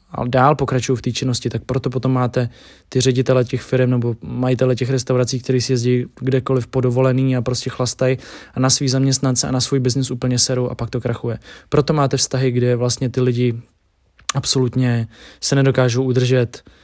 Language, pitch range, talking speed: Czech, 125-135 Hz, 180 wpm